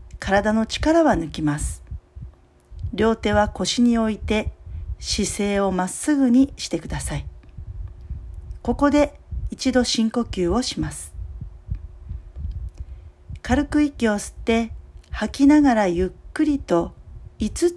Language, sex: Japanese, female